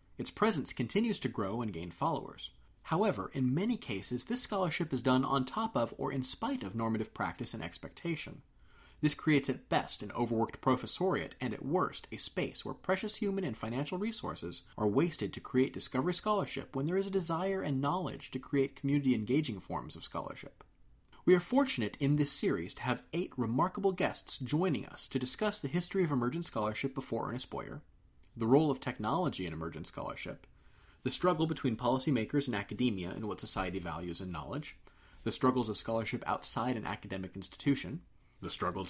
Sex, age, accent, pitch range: male, 30-49, American, 115-170 Hz